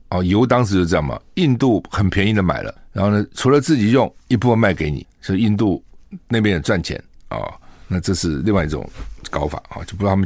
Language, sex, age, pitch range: Chinese, male, 50-69, 85-120 Hz